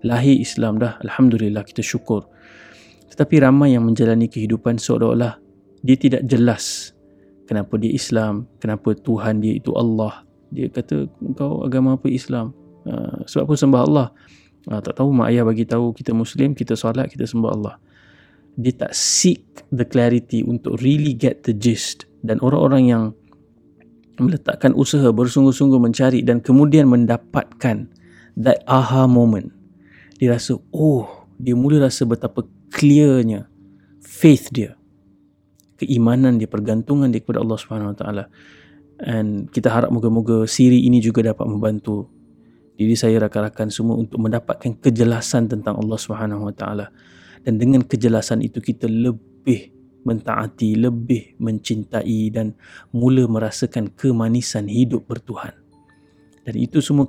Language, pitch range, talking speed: Malay, 110-130 Hz, 135 wpm